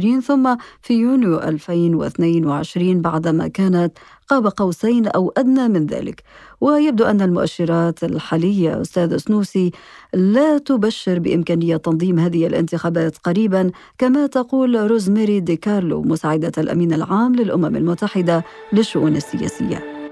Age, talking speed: 50-69, 110 wpm